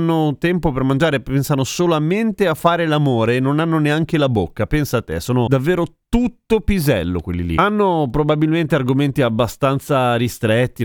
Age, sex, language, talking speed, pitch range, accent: 30-49, male, Italian, 155 wpm, 115-150 Hz, native